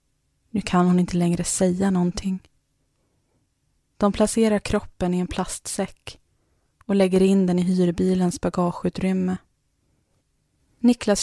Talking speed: 110 wpm